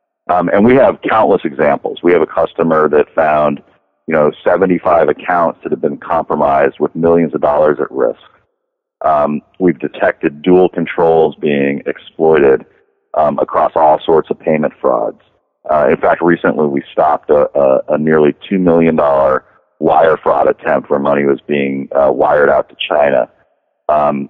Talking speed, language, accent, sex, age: 160 wpm, English, American, male, 40-59